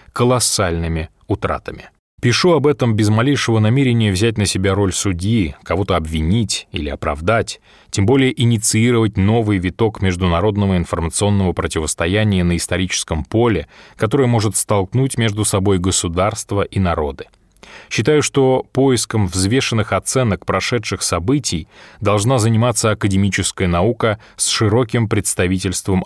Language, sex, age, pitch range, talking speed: Russian, male, 20-39, 95-120 Hz, 115 wpm